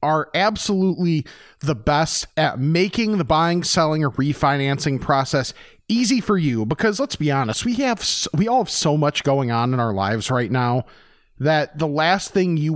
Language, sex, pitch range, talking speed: English, male, 140-190 Hz, 180 wpm